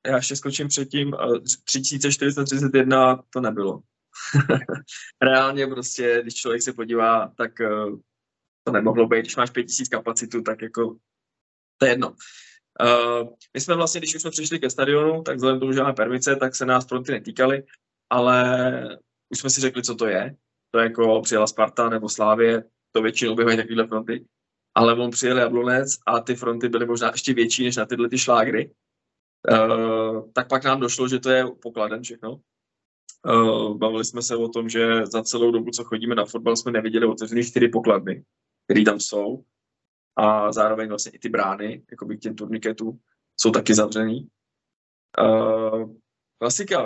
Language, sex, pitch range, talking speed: Czech, male, 115-130 Hz, 170 wpm